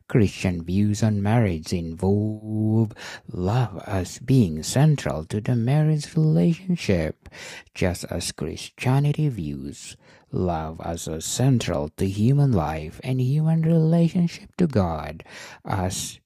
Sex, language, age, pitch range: male, English, 60-79, 90-125 Hz